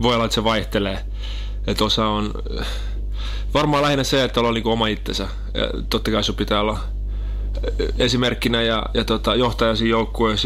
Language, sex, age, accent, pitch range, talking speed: Finnish, male, 20-39, native, 100-115 Hz, 160 wpm